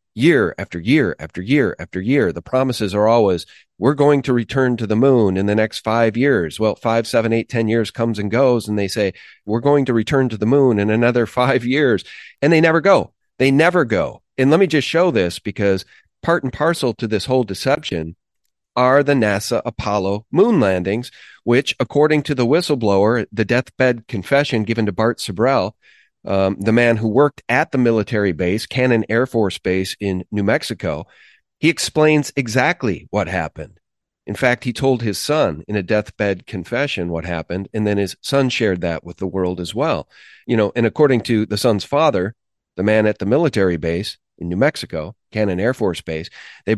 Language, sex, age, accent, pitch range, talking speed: English, male, 40-59, American, 100-130 Hz, 190 wpm